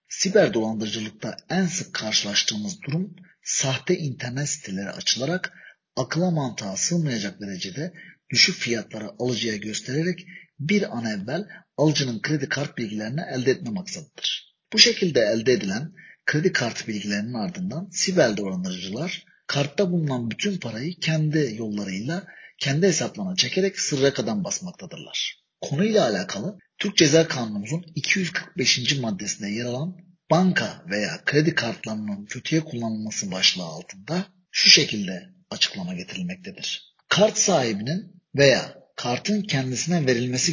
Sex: male